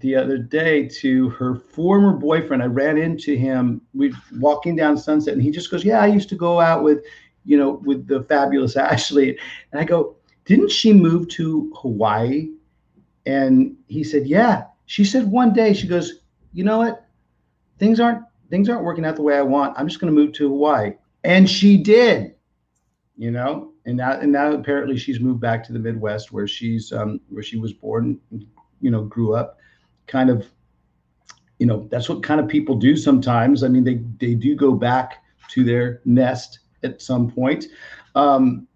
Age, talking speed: 50-69, 190 wpm